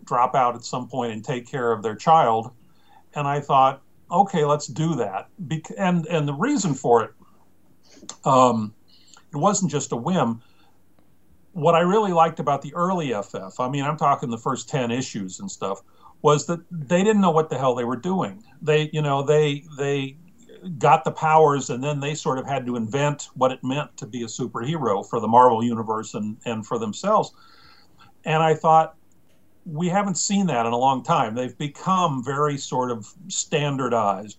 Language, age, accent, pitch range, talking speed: English, 50-69, American, 120-160 Hz, 185 wpm